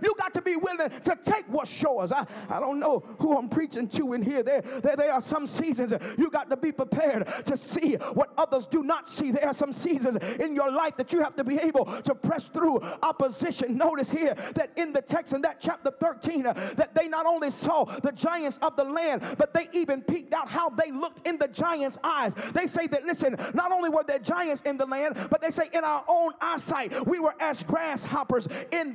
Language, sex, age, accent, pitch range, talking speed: English, male, 40-59, American, 275-335 Hz, 230 wpm